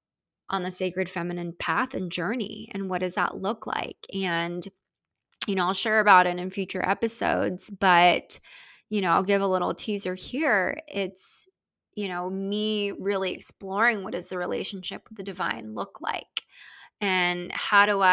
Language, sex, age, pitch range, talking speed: English, female, 20-39, 185-210 Hz, 165 wpm